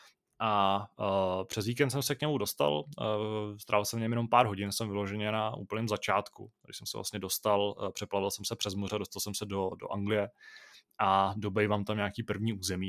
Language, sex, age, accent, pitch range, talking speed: Czech, male, 20-39, native, 100-115 Hz, 205 wpm